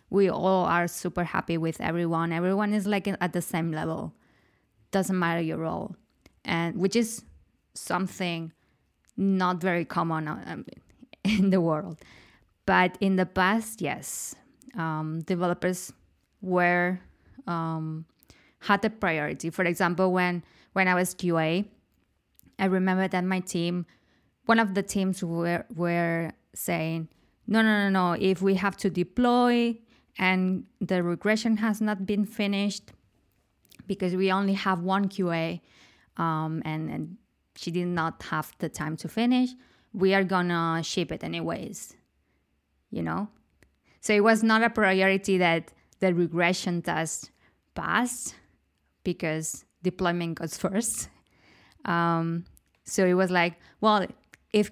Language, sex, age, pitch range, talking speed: English, female, 20-39, 165-195 Hz, 135 wpm